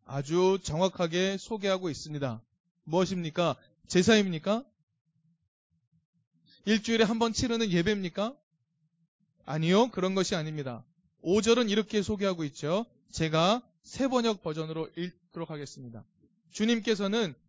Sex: male